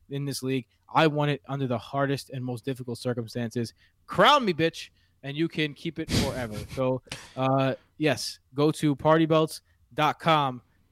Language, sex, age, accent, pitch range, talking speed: English, male, 20-39, American, 120-160 Hz, 155 wpm